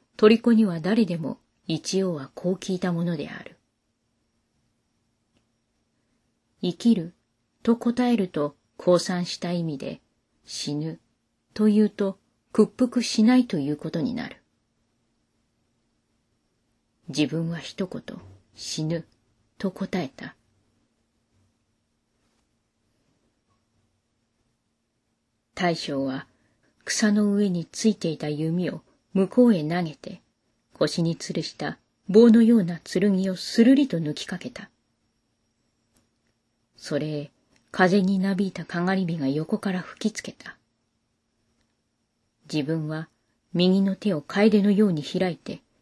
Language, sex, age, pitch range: Japanese, female, 30-49, 115-195 Hz